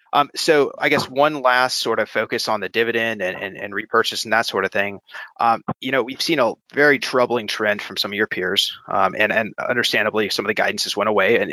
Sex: male